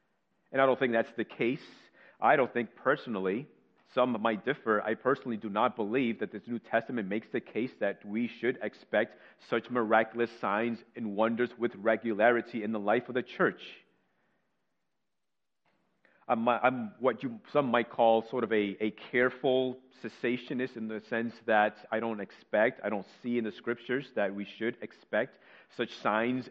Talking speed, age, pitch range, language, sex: 165 wpm, 40-59, 105-120 Hz, English, male